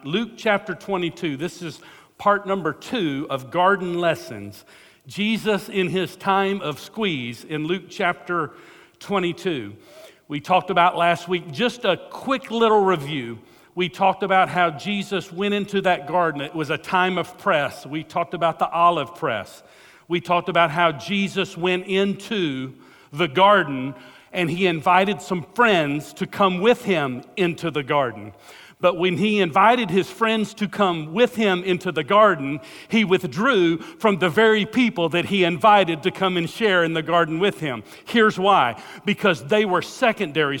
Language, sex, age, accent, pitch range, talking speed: English, male, 50-69, American, 165-200 Hz, 165 wpm